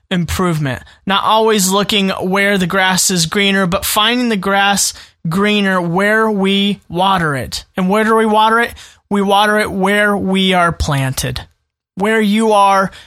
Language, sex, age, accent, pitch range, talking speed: English, male, 30-49, American, 180-220 Hz, 155 wpm